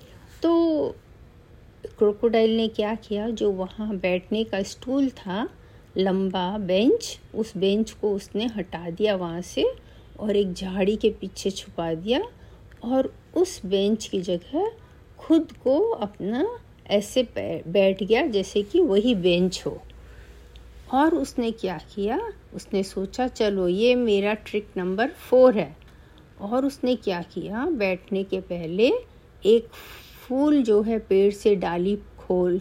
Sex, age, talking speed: female, 50-69, 135 wpm